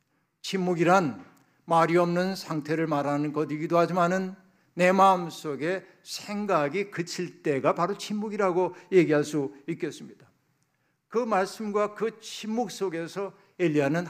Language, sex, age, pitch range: Korean, male, 60-79, 155-190 Hz